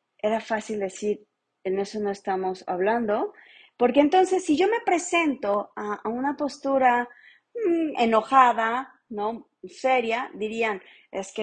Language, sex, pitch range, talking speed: Spanish, female, 200-270 Hz, 125 wpm